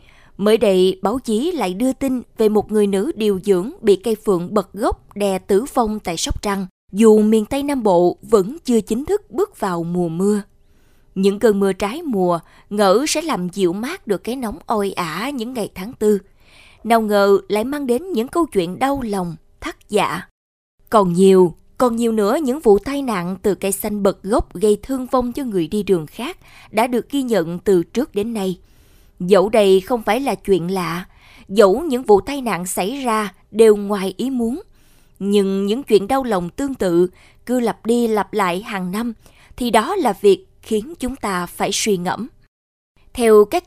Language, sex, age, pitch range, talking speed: Vietnamese, female, 20-39, 190-240 Hz, 195 wpm